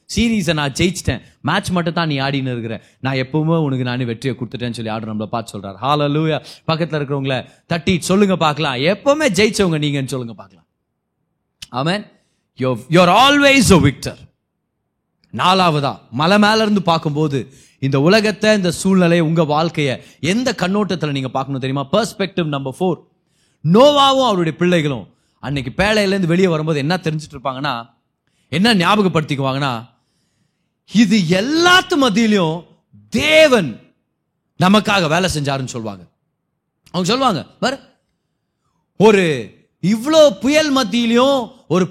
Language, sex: Tamil, male